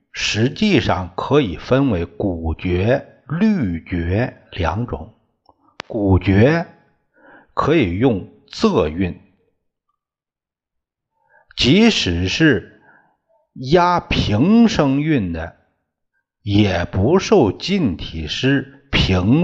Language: Chinese